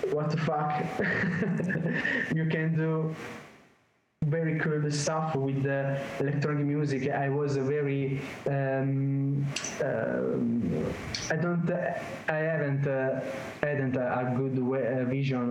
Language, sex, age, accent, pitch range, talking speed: English, male, 20-39, Italian, 120-140 Hz, 105 wpm